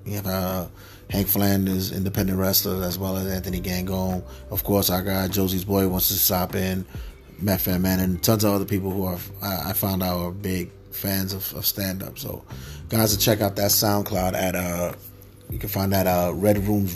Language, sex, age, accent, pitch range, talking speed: English, male, 30-49, American, 95-105 Hz, 200 wpm